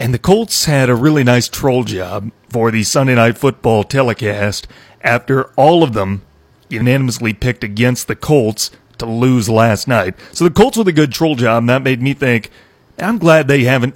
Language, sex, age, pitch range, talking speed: English, male, 40-59, 115-145 Hz, 190 wpm